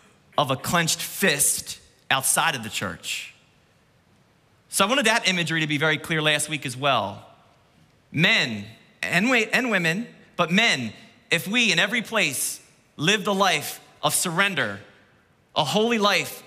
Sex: male